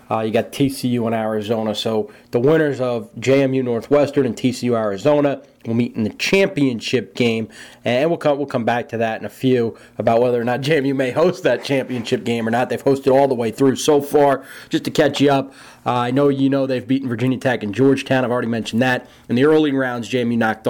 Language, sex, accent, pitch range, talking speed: English, male, American, 120-145 Hz, 225 wpm